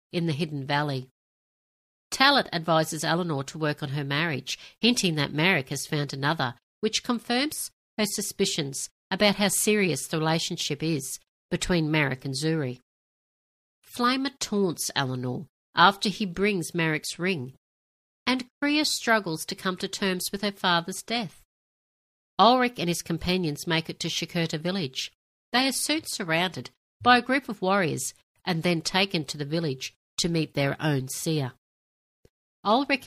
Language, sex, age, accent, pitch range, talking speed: English, female, 60-79, Australian, 145-200 Hz, 145 wpm